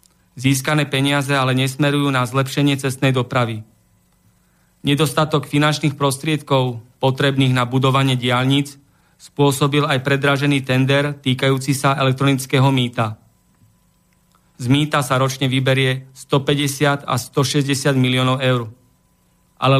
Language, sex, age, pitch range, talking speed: Slovak, male, 40-59, 130-150 Hz, 105 wpm